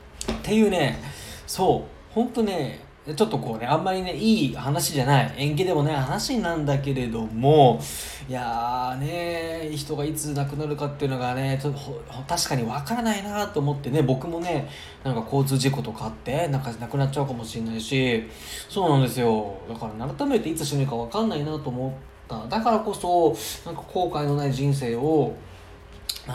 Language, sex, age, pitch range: Japanese, male, 20-39, 120-165 Hz